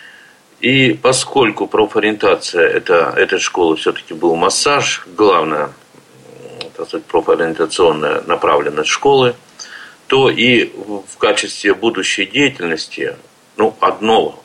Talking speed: 85 wpm